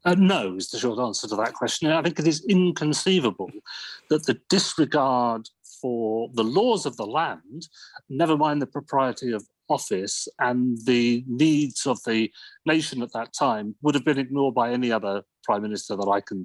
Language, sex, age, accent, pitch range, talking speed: English, male, 40-59, British, 115-165 Hz, 180 wpm